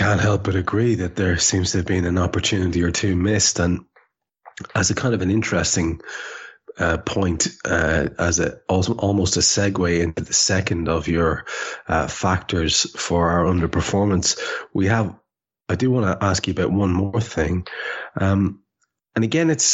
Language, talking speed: English, 175 wpm